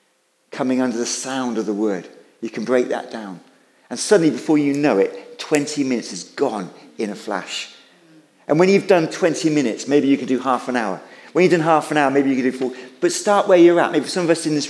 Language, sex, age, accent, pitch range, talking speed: English, male, 50-69, British, 145-195 Hz, 245 wpm